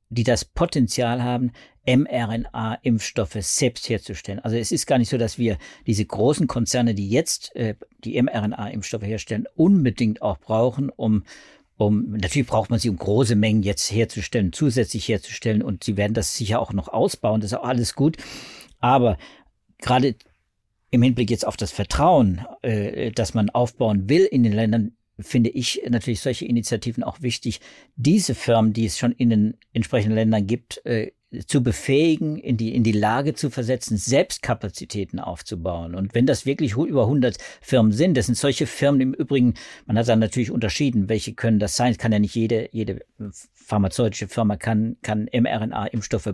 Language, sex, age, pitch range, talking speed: German, male, 50-69, 105-125 Hz, 170 wpm